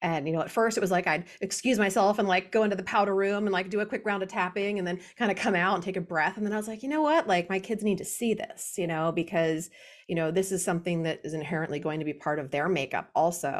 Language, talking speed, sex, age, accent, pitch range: English, 310 wpm, female, 30-49, American, 160-205 Hz